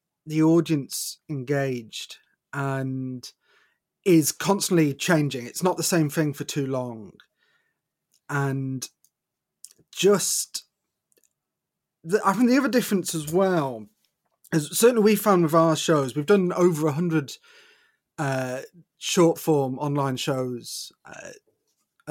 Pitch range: 145-195 Hz